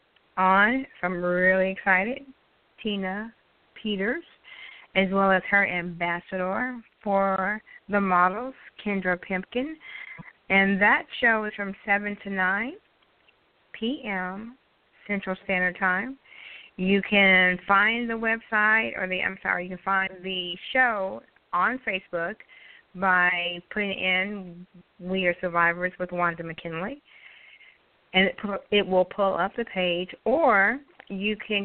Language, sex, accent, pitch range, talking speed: English, female, American, 180-215 Hz, 125 wpm